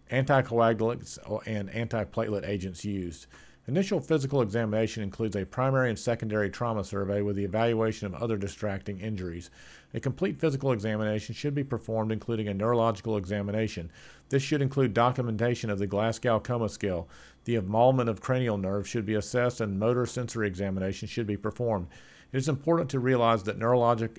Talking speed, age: 160 wpm, 50-69